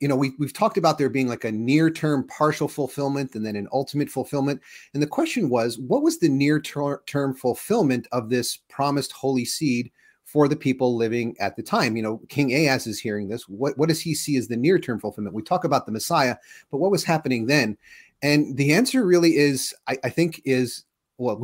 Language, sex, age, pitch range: English, male, 30-49, 125-150 Hz